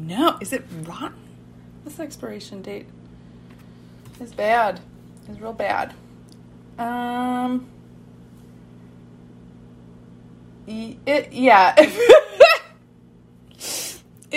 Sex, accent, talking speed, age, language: female, American, 65 wpm, 30-49, English